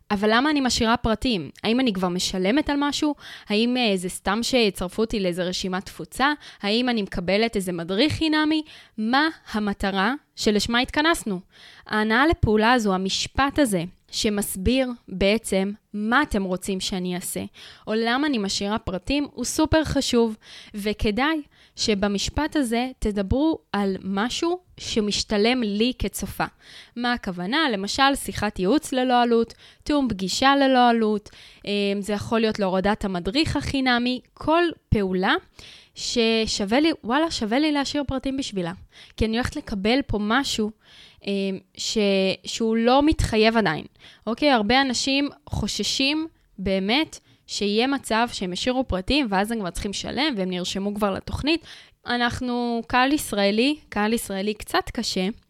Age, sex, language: 10-29, female, Hebrew